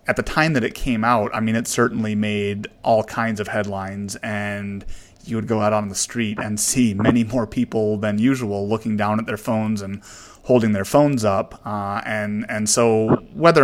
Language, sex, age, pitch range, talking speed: English, male, 30-49, 100-115 Hz, 200 wpm